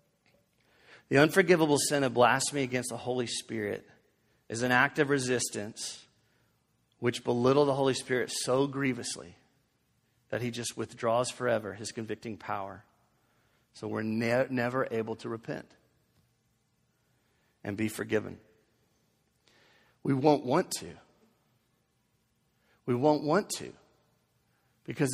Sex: male